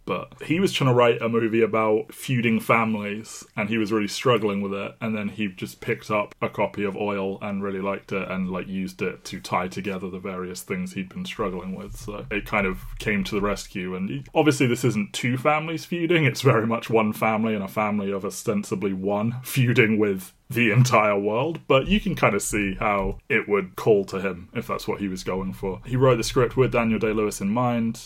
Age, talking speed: 20-39, 225 wpm